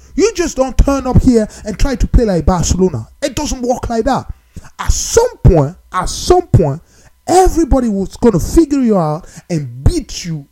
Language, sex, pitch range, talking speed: English, male, 185-310 Hz, 190 wpm